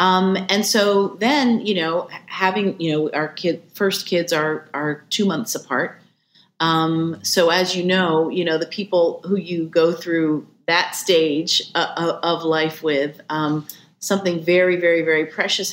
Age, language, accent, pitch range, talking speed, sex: 40-59, English, American, 160-190 Hz, 165 wpm, female